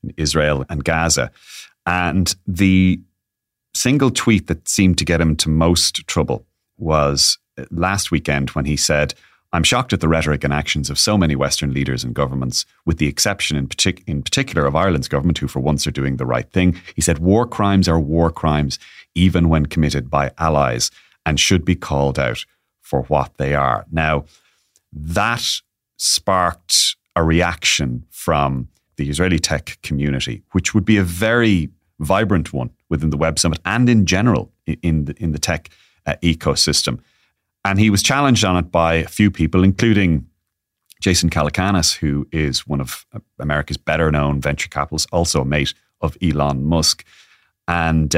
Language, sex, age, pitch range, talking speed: English, male, 30-49, 75-95 Hz, 165 wpm